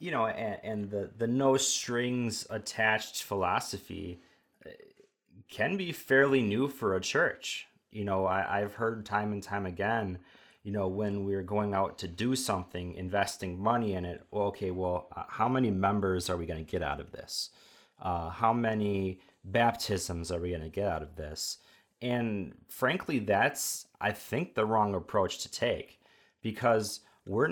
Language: English